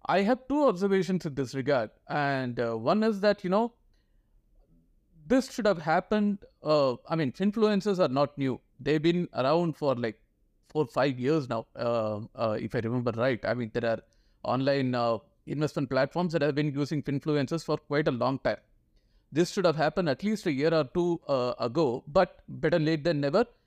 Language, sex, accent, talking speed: English, male, Indian, 195 wpm